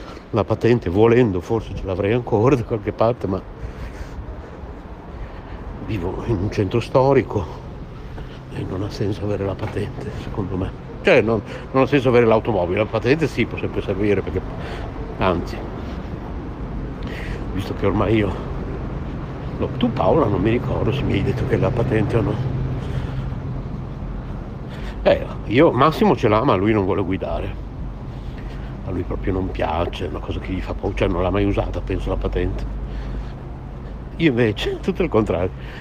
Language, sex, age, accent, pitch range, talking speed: Italian, male, 60-79, native, 95-120 Hz, 160 wpm